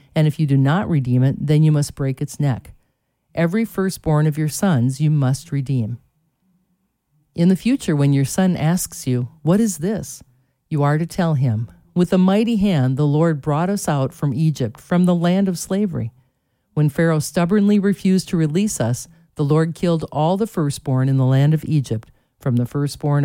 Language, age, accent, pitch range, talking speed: English, 50-69, American, 135-180 Hz, 190 wpm